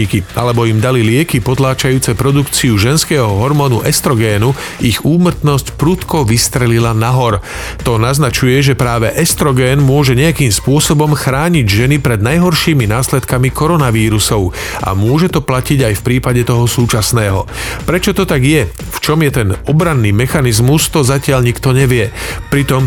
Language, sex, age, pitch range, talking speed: Slovak, male, 40-59, 115-145 Hz, 135 wpm